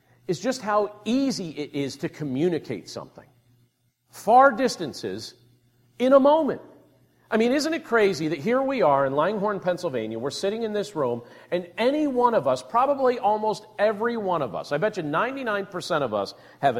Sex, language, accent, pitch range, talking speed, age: male, English, American, 140-205 Hz, 175 wpm, 50-69